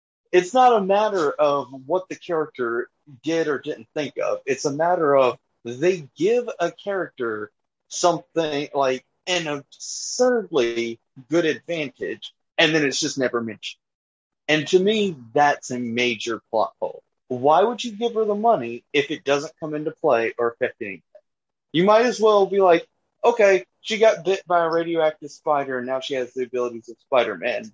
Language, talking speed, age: English, 170 wpm, 30-49